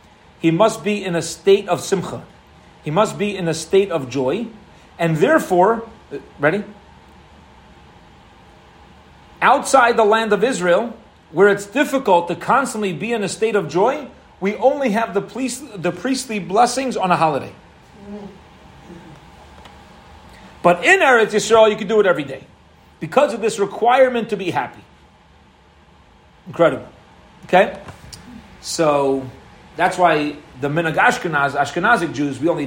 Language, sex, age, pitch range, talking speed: English, male, 40-59, 135-205 Hz, 140 wpm